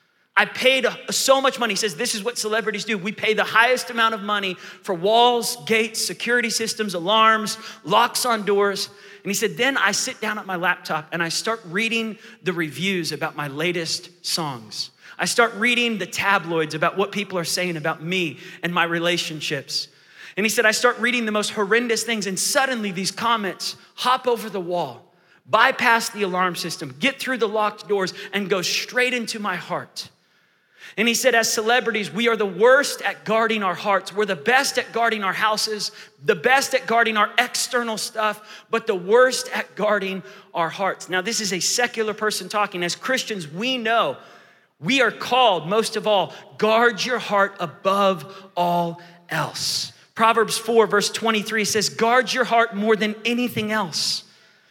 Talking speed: 180 wpm